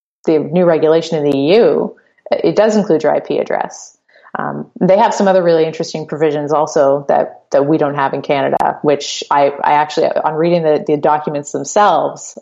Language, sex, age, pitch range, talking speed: English, female, 30-49, 145-170 Hz, 185 wpm